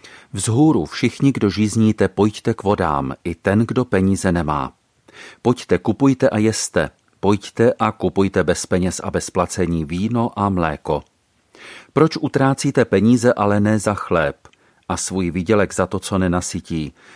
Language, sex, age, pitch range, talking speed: Czech, male, 40-59, 95-115 Hz, 140 wpm